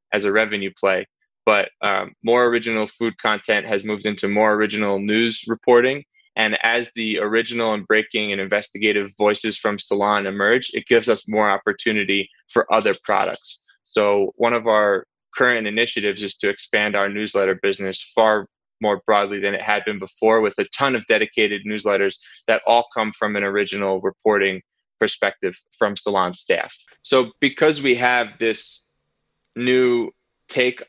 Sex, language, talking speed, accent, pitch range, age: male, English, 155 wpm, American, 105-115 Hz, 20-39